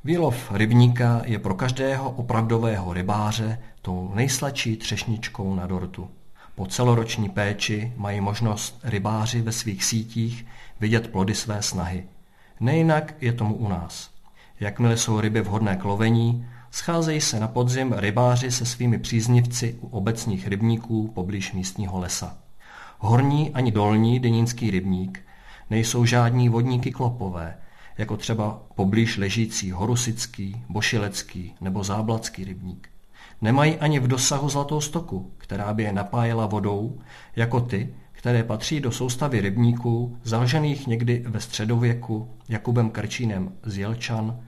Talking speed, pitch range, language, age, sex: 125 wpm, 105-120 Hz, Czech, 50-69, male